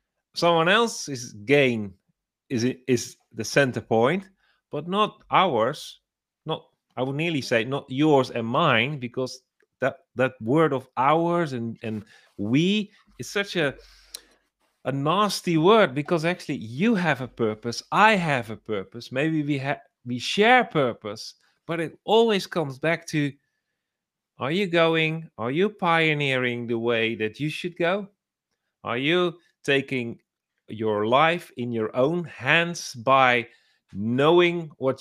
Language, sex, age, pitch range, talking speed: English, male, 30-49, 125-175 Hz, 140 wpm